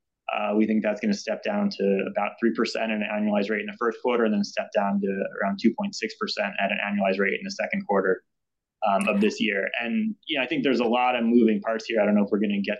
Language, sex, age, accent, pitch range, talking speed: English, male, 20-39, American, 100-125 Hz, 270 wpm